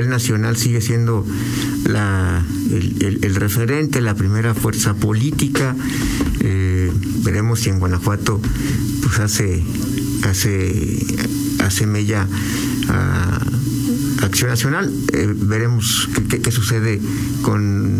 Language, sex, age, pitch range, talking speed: Spanish, male, 60-79, 100-125 Hz, 105 wpm